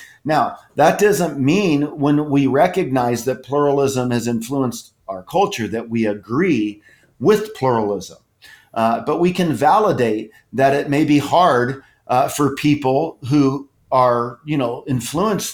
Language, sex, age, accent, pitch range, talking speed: English, male, 40-59, American, 120-145 Hz, 130 wpm